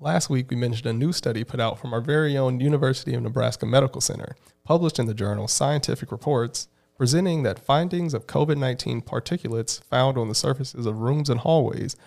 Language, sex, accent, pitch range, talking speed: English, male, American, 115-140 Hz, 190 wpm